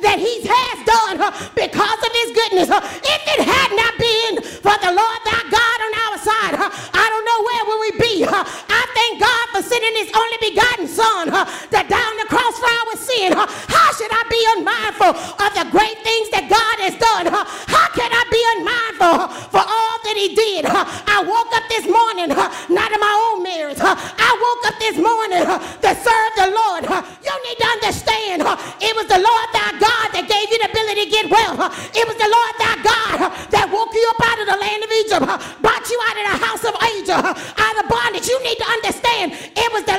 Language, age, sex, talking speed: English, 40-59, female, 195 wpm